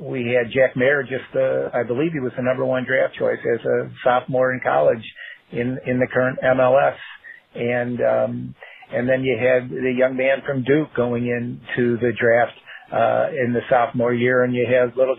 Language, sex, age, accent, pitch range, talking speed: English, male, 50-69, American, 120-135 Hz, 195 wpm